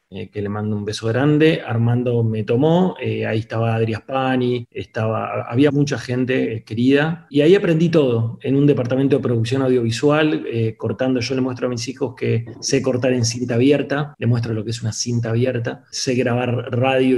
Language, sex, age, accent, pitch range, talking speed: Portuguese, male, 30-49, Argentinian, 125-145 Hz, 195 wpm